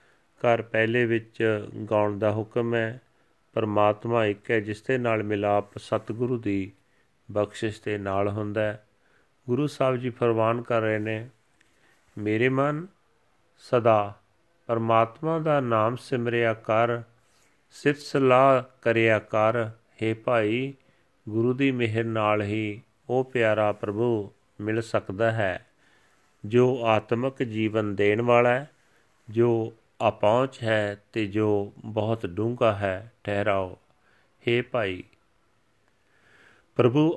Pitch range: 105-120 Hz